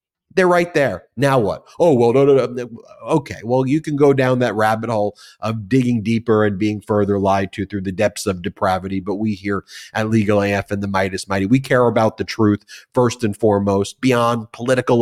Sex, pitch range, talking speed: male, 110-150 Hz, 210 wpm